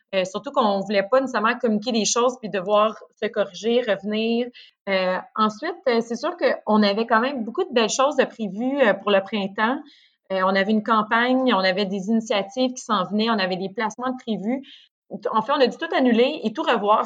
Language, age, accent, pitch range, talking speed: French, 30-49, Canadian, 195-245 Hz, 210 wpm